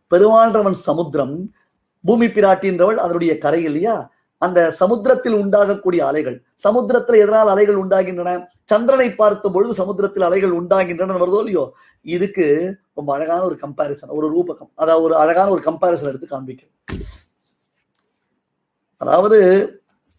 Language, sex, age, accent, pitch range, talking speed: Tamil, male, 30-49, native, 170-235 Hz, 115 wpm